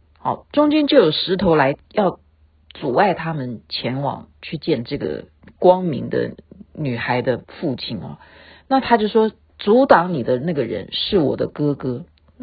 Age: 50-69